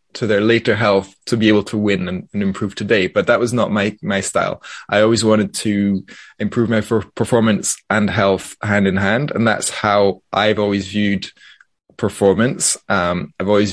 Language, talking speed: English, 190 wpm